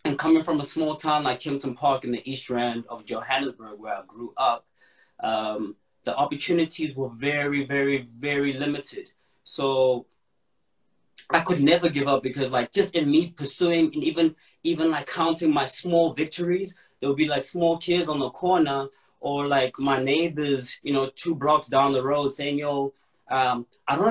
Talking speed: 180 wpm